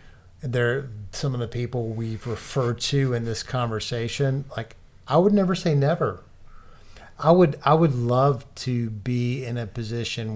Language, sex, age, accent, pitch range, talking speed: English, male, 50-69, American, 105-125 Hz, 160 wpm